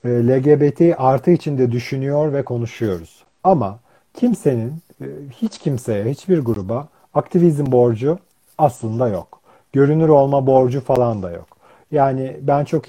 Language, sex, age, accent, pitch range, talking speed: Turkish, male, 40-59, native, 115-145 Hz, 115 wpm